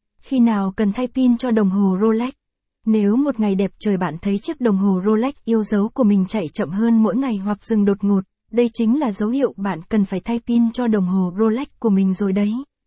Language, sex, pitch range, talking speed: Vietnamese, female, 200-240 Hz, 240 wpm